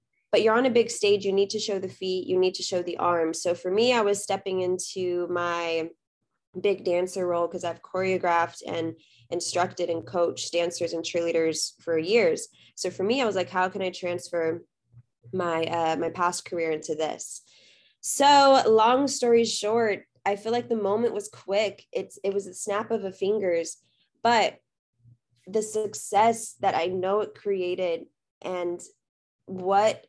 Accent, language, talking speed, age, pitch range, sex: American, English, 175 wpm, 20-39, 175-225 Hz, female